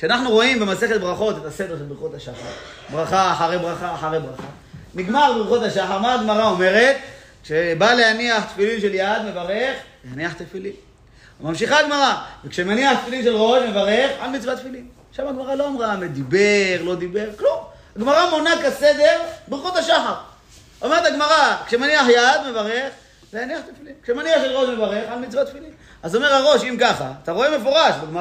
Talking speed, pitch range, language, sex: 145 wpm, 180-270 Hz, Hebrew, male